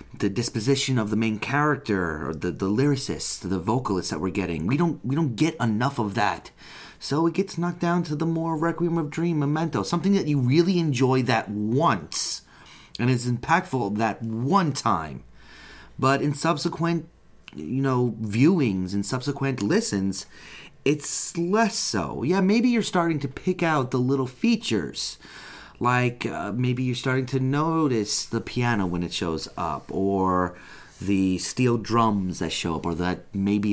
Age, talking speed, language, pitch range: 30-49, 165 wpm, English, 95-145 Hz